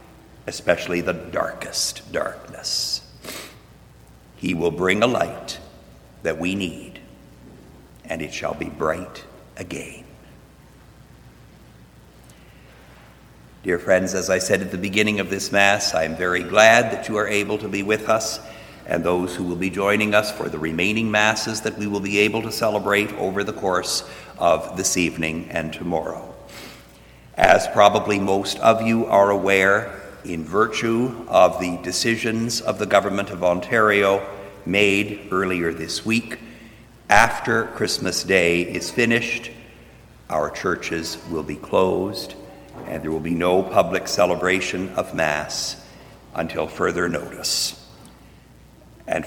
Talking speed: 135 wpm